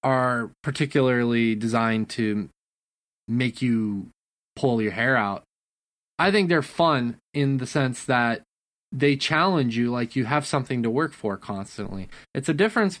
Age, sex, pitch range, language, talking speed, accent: 20-39, male, 115-145 Hz, English, 150 wpm, American